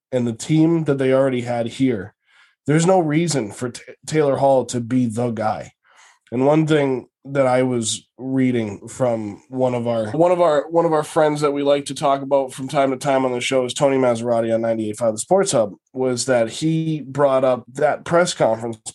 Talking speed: 205 wpm